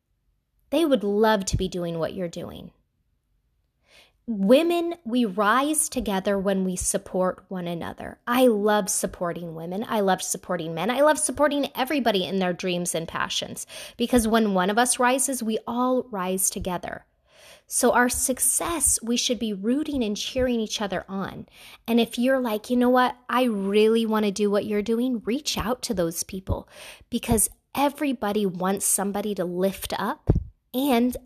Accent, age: American, 20-39